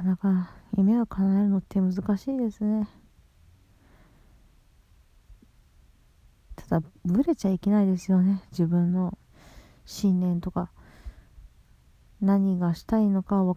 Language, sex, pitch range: Japanese, female, 175-210 Hz